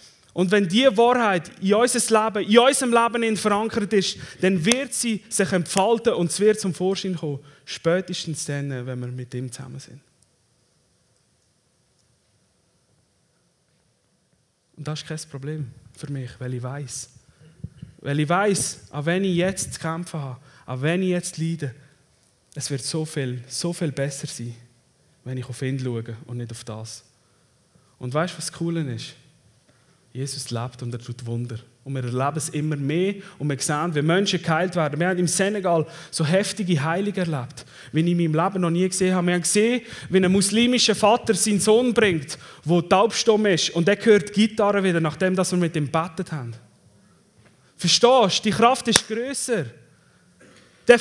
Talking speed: 170 wpm